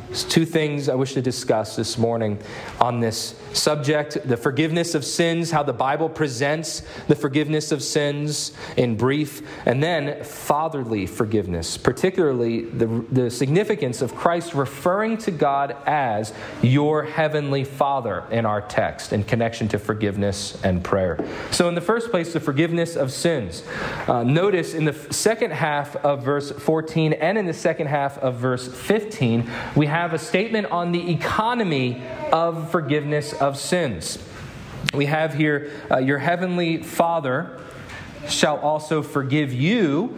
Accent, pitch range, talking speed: American, 120-160 Hz, 150 wpm